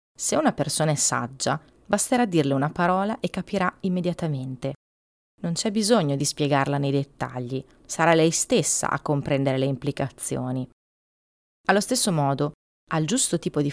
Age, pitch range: 30-49, 145-190 Hz